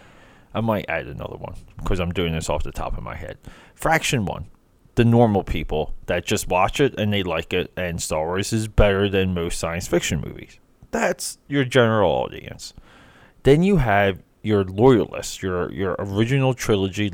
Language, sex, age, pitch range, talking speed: English, male, 30-49, 100-135 Hz, 180 wpm